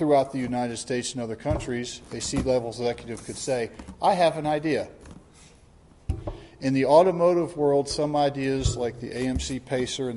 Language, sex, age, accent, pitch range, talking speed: English, male, 40-59, American, 110-140 Hz, 160 wpm